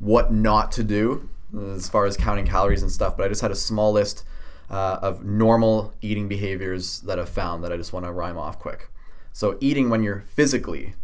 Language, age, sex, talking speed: English, 20-39, male, 210 wpm